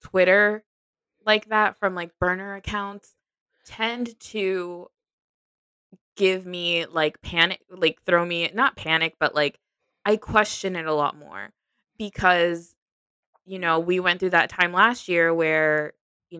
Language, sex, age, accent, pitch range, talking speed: English, female, 20-39, American, 155-195 Hz, 140 wpm